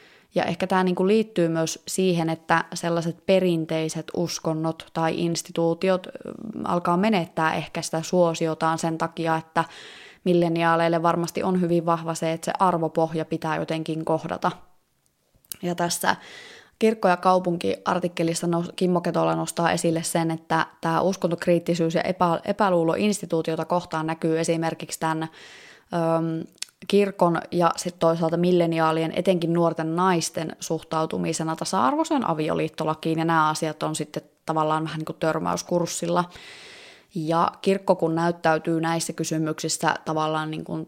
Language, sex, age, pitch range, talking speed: Finnish, female, 20-39, 160-175 Hz, 115 wpm